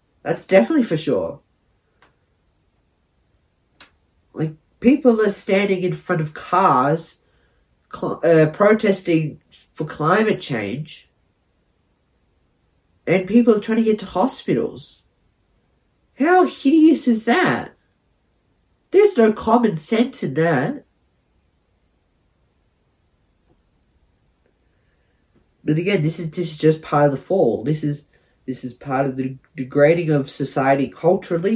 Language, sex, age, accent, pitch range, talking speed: English, male, 30-49, Australian, 135-190 Hz, 105 wpm